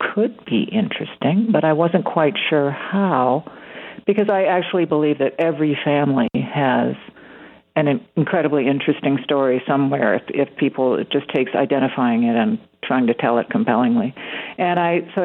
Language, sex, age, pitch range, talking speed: English, female, 50-69, 140-175 Hz, 155 wpm